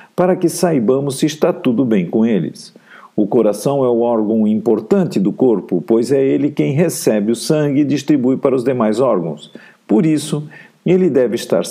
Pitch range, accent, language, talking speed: 115-155 Hz, Brazilian, Portuguese, 180 wpm